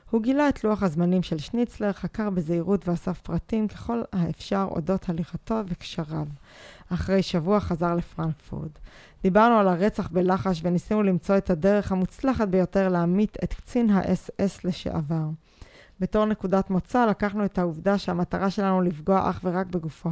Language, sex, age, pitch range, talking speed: Hebrew, female, 20-39, 175-205 Hz, 145 wpm